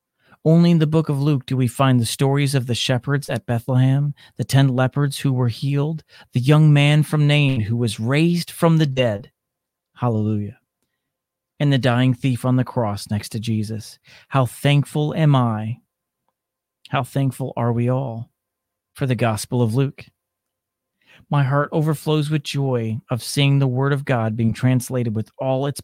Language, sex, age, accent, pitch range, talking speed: English, male, 40-59, American, 115-140 Hz, 170 wpm